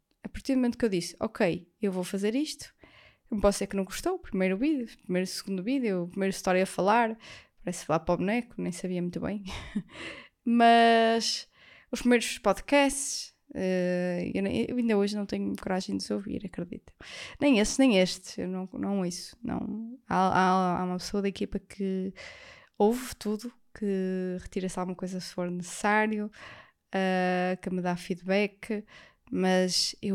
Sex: female